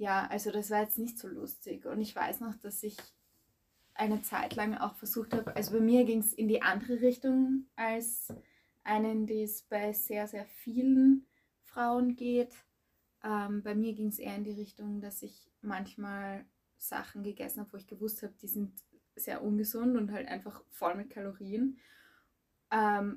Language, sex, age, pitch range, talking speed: German, female, 20-39, 205-230 Hz, 180 wpm